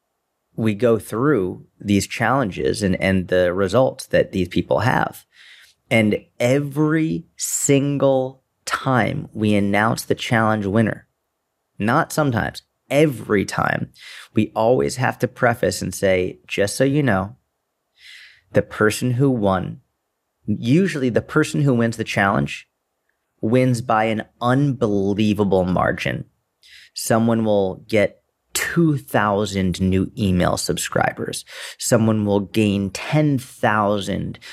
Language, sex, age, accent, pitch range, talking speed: English, male, 30-49, American, 105-135 Hz, 110 wpm